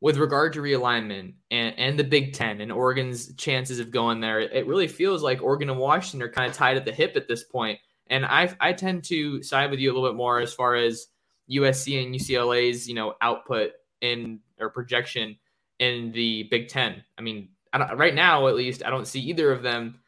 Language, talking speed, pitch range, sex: English, 220 wpm, 115-135 Hz, male